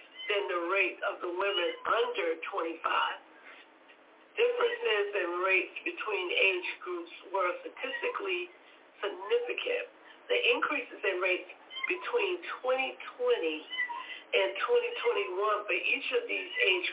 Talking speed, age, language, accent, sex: 105 wpm, 50-69, English, American, female